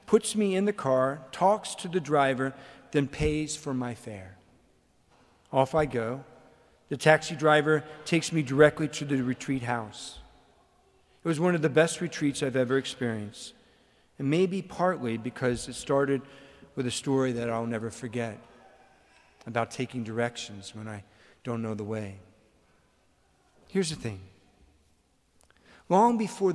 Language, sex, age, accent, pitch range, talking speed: English, male, 50-69, American, 115-160 Hz, 145 wpm